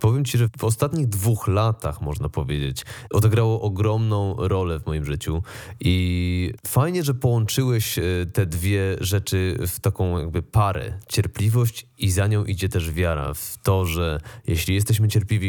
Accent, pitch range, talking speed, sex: native, 95-115 Hz, 150 wpm, male